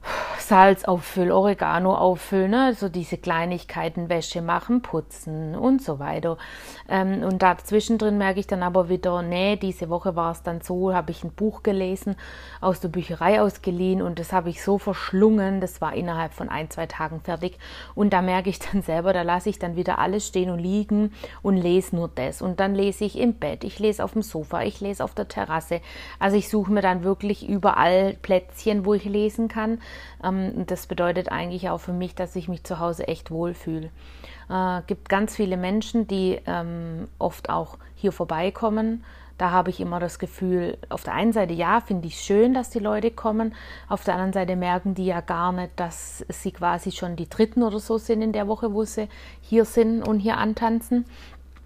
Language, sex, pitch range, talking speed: German, female, 175-210 Hz, 195 wpm